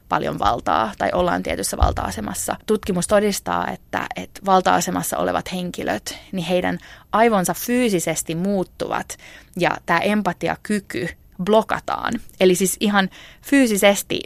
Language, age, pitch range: Finnish, 20-39, 170-205 Hz